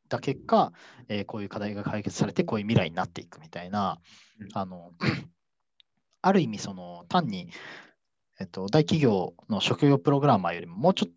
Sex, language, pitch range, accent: male, Japanese, 95-130 Hz, native